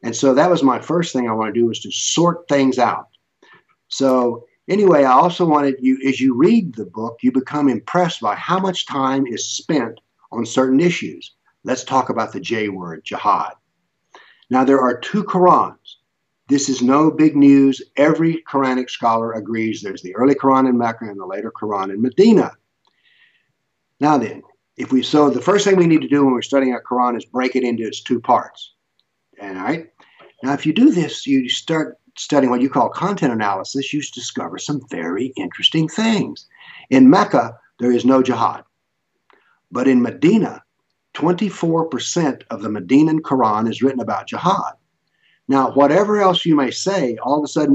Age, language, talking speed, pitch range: 50-69, English, 180 wpm, 125-165 Hz